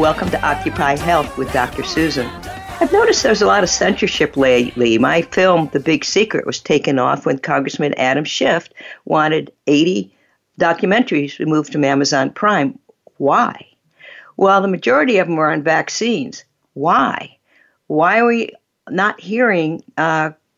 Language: English